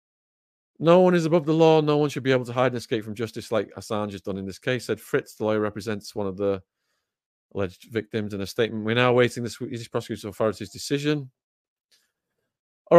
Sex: male